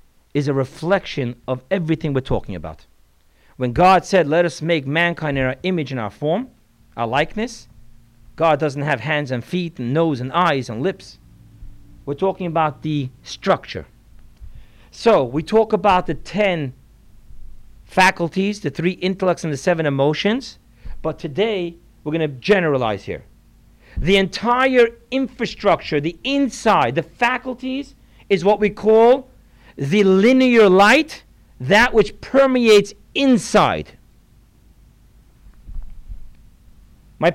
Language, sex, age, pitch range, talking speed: English, male, 50-69, 135-210 Hz, 130 wpm